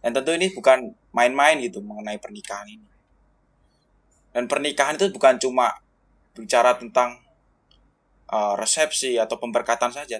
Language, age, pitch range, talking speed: Indonesian, 20-39, 115-135 Hz, 125 wpm